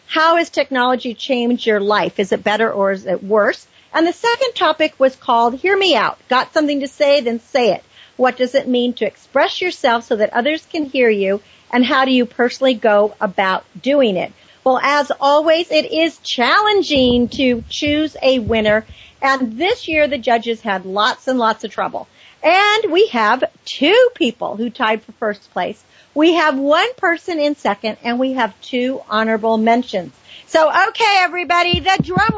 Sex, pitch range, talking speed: female, 230-315 Hz, 185 wpm